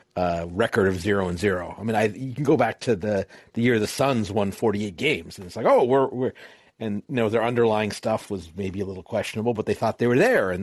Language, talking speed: English, 265 wpm